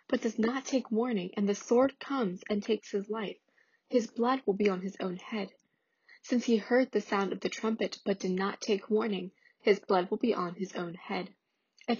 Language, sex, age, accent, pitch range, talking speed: English, female, 20-39, American, 195-235 Hz, 215 wpm